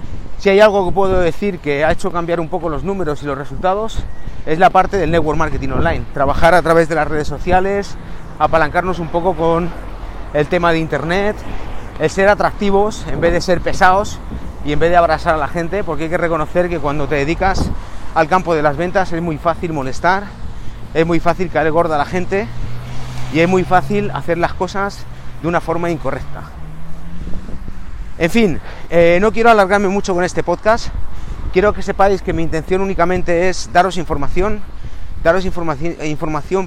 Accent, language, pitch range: Spanish, Spanish, 145-185 Hz